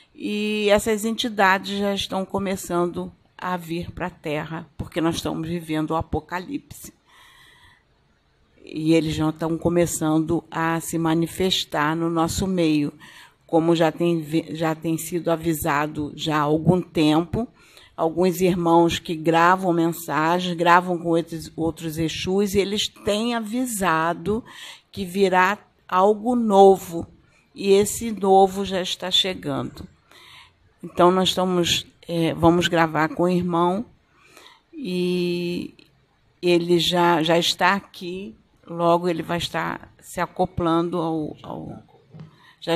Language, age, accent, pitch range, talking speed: Portuguese, 50-69, Brazilian, 165-190 Hz, 125 wpm